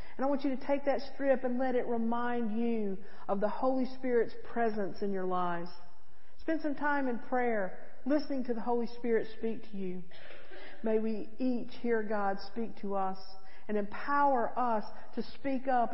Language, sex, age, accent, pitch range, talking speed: English, female, 50-69, American, 170-225 Hz, 180 wpm